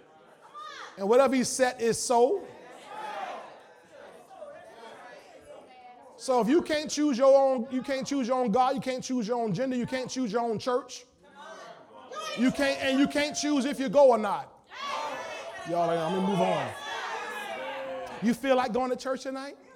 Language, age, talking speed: English, 20-39, 175 wpm